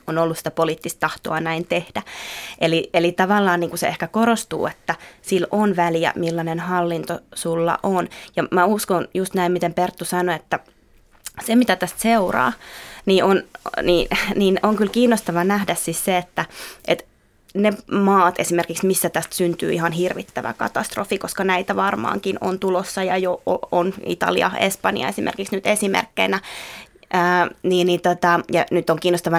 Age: 20-39